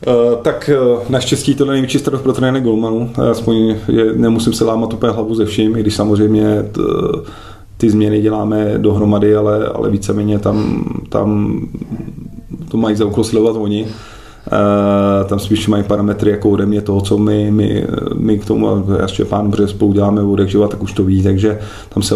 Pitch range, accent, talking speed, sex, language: 100-110 Hz, native, 180 wpm, male, Czech